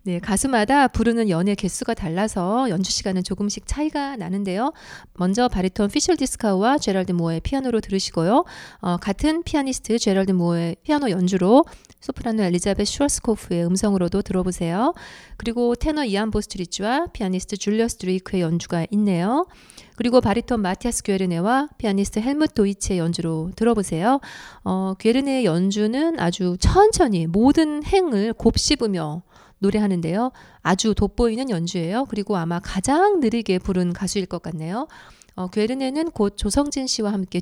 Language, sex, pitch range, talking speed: English, female, 185-255 Hz, 120 wpm